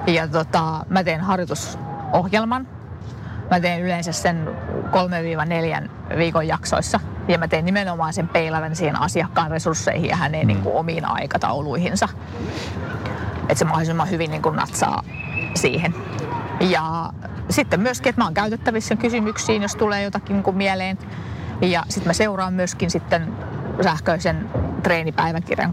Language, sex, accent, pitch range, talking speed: Finnish, female, native, 155-190 Hz, 130 wpm